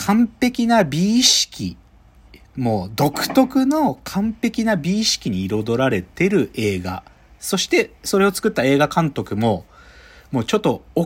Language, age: Japanese, 40-59